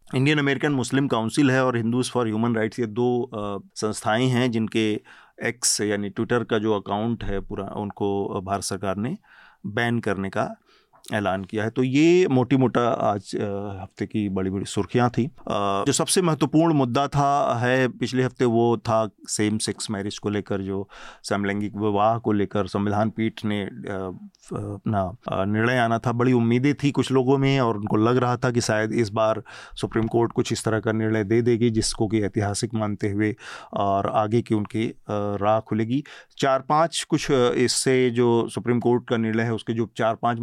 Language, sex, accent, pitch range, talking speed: Hindi, male, native, 105-125 Hz, 180 wpm